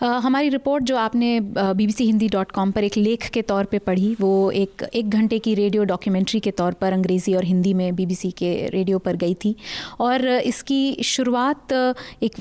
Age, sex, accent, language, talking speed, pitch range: 30-49, female, native, Hindi, 195 wpm, 195-245 Hz